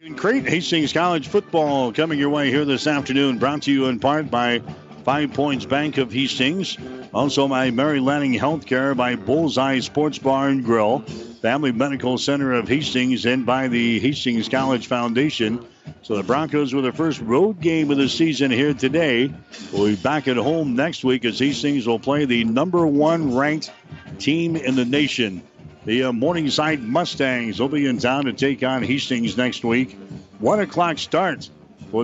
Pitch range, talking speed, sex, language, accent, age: 120-140 Hz, 175 wpm, male, English, American, 60-79